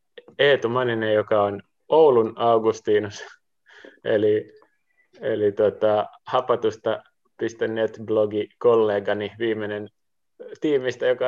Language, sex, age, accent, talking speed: Finnish, male, 20-39, native, 75 wpm